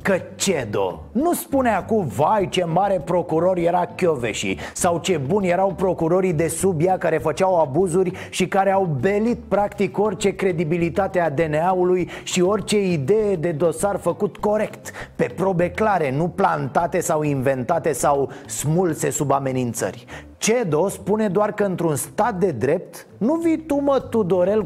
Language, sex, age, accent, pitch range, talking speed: Romanian, male, 30-49, native, 150-205 Hz, 150 wpm